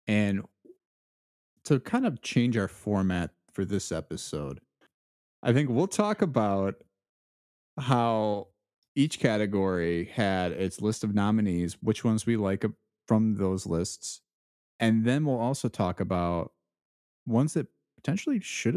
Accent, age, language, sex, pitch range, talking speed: American, 30-49, English, male, 90-125 Hz, 130 wpm